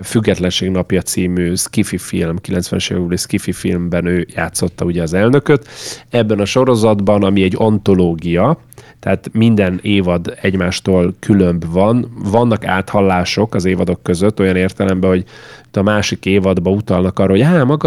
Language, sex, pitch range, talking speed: Hungarian, male, 90-110 Hz, 140 wpm